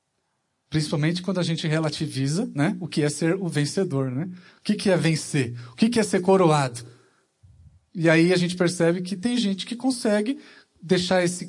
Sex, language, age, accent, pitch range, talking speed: male, Portuguese, 40-59, Brazilian, 160-235 Hz, 190 wpm